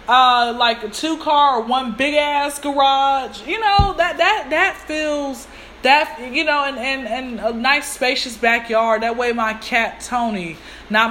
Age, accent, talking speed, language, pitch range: 20-39, American, 175 wpm, English, 235-320 Hz